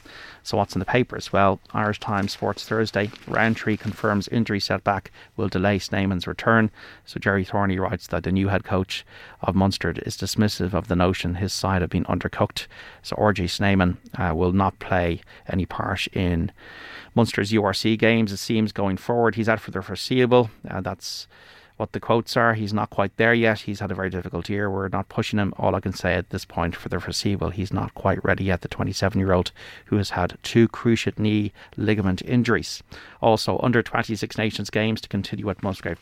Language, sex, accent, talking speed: English, male, Irish, 195 wpm